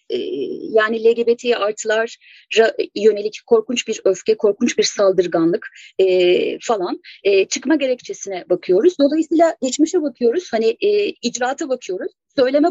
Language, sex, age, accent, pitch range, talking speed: Turkish, female, 30-49, native, 230-350 Hz, 100 wpm